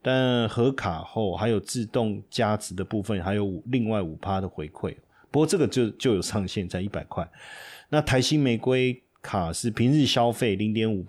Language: Chinese